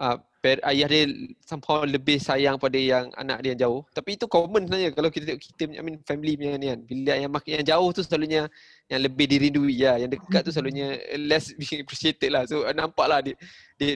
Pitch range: 125-150 Hz